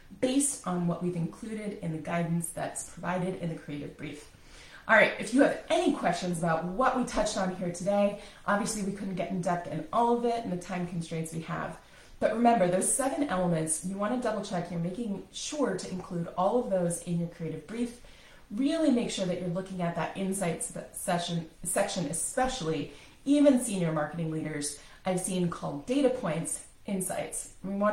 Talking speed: 195 wpm